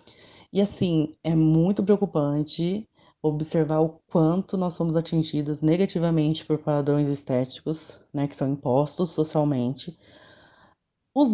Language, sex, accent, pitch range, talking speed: Portuguese, female, Brazilian, 150-195 Hz, 110 wpm